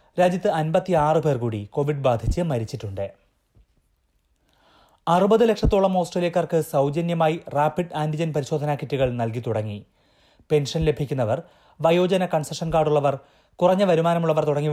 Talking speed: 80 wpm